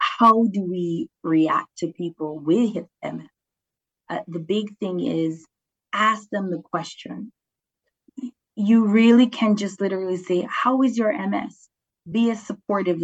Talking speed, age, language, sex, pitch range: 140 wpm, 20-39, English, female, 180-230 Hz